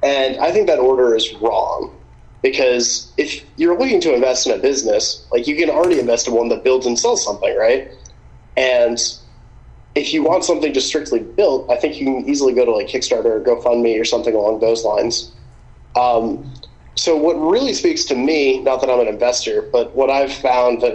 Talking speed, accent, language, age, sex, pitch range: 200 wpm, American, English, 30-49, male, 120-175 Hz